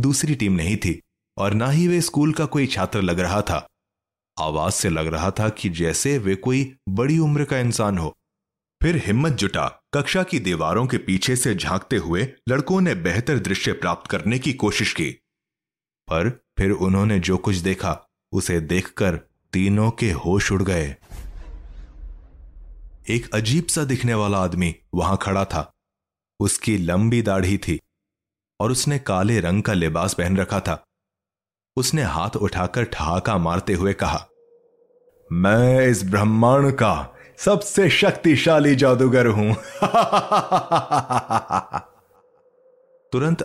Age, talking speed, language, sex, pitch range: 30-49, 140 wpm, Hindi, male, 90-130 Hz